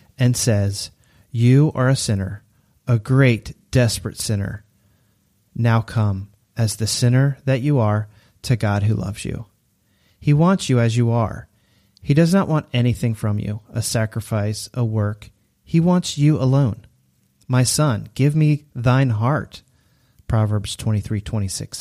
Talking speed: 145 wpm